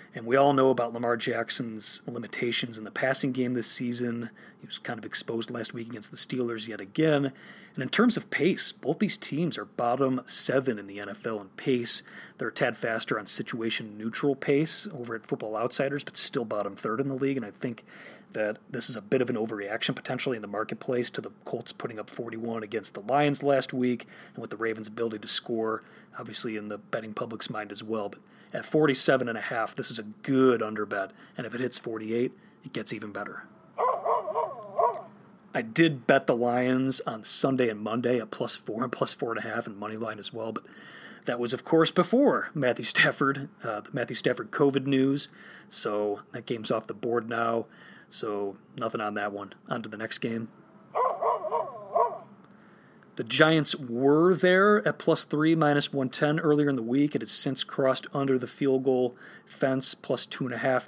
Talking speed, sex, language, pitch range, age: 200 wpm, male, English, 115-140 Hz, 30-49